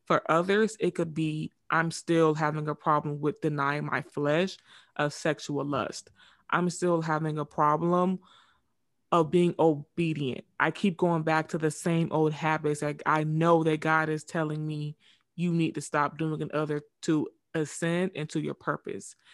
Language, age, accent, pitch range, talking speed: English, 20-39, American, 150-175 Hz, 165 wpm